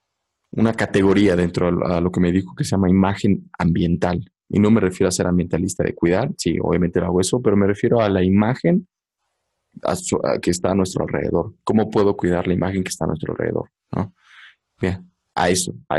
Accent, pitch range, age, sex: Mexican, 95-145 Hz, 20-39, male